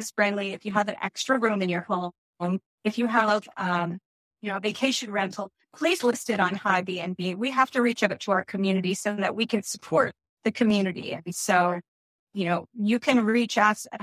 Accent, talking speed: American, 205 wpm